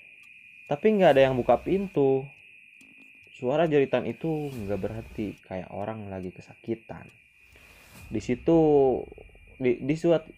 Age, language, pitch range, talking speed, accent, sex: 20-39, Indonesian, 90-130 Hz, 115 wpm, native, male